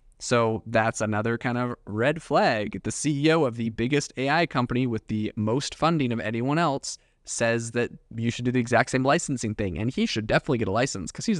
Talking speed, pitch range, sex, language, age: 210 wpm, 110-135 Hz, male, English, 20-39